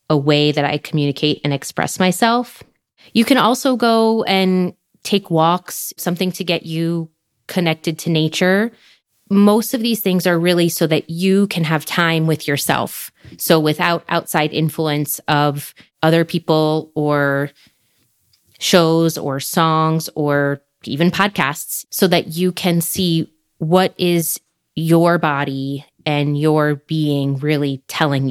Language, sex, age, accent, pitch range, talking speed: English, female, 20-39, American, 150-175 Hz, 135 wpm